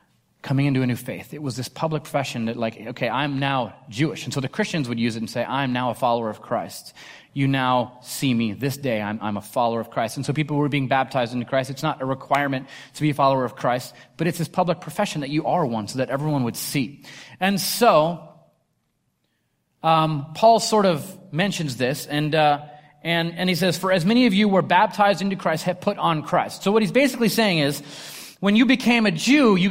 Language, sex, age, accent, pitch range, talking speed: English, male, 30-49, American, 135-185 Hz, 230 wpm